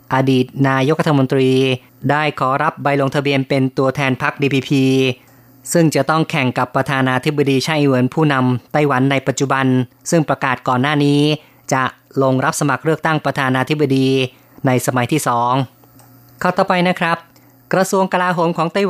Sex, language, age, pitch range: female, Thai, 20-39, 130-155 Hz